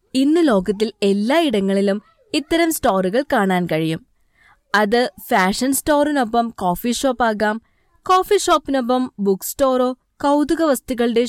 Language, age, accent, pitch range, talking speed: Malayalam, 20-39, native, 210-290 Hz, 100 wpm